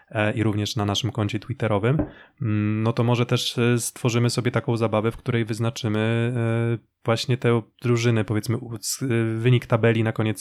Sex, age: male, 20-39